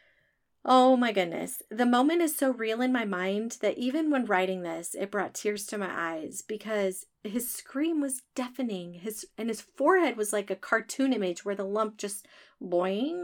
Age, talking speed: 30-49, 185 wpm